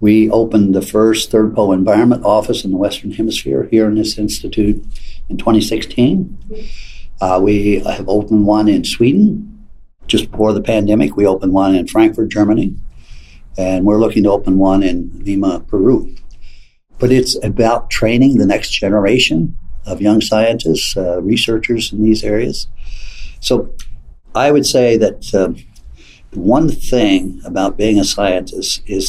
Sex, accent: male, American